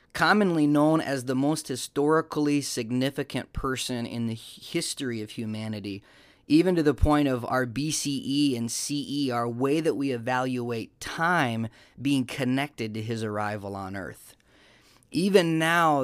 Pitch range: 125-150 Hz